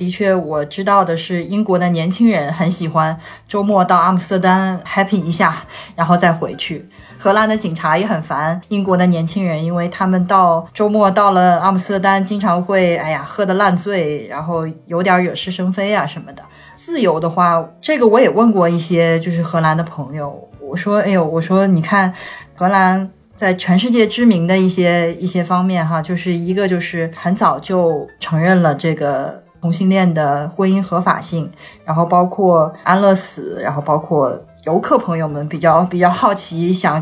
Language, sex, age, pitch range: Chinese, female, 20-39, 165-200 Hz